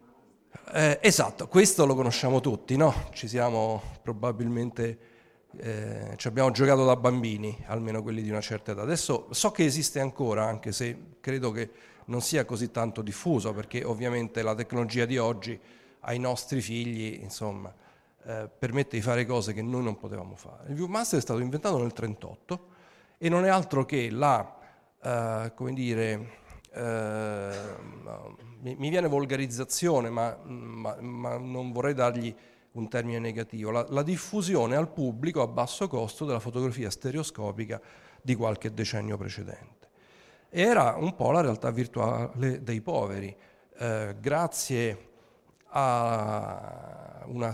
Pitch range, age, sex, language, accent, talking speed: 110-135 Hz, 40-59, male, Italian, native, 145 wpm